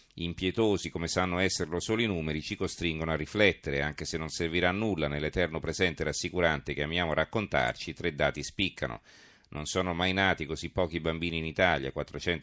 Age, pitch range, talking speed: 40-59, 75-90 Hz, 165 wpm